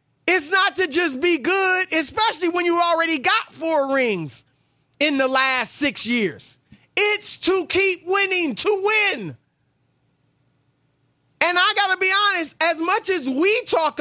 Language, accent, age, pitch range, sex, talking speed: English, American, 30-49, 265-380 Hz, male, 150 wpm